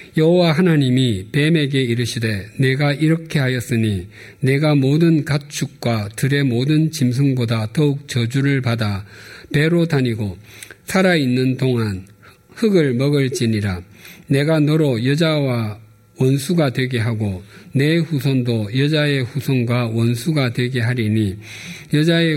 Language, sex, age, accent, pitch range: Korean, male, 50-69, native, 115-145 Hz